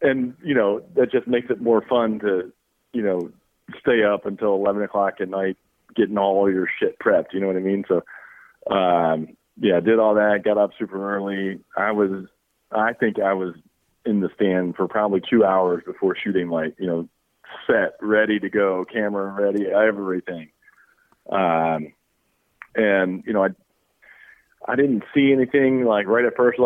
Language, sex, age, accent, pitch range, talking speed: English, male, 40-59, American, 90-110 Hz, 180 wpm